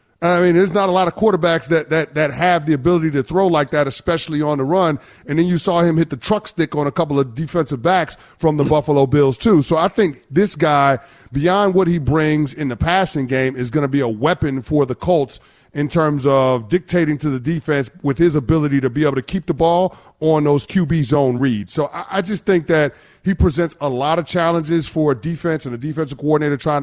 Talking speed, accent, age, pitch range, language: 235 wpm, American, 30-49, 135-165 Hz, English